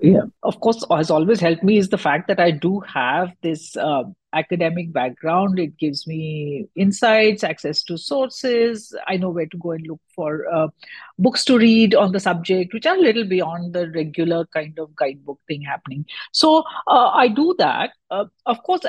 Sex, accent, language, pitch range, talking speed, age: female, Indian, English, 165-225 Hz, 195 wpm, 50-69